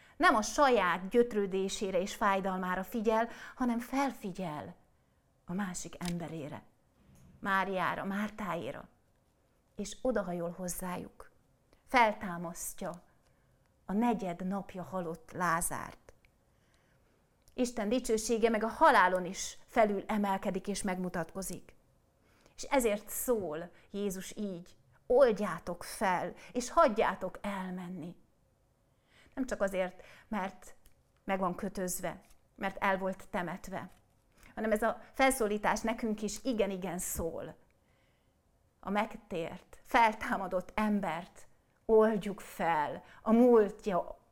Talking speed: 95 wpm